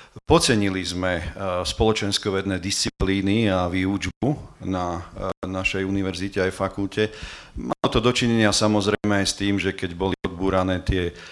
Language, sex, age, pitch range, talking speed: Slovak, male, 40-59, 95-105 Hz, 120 wpm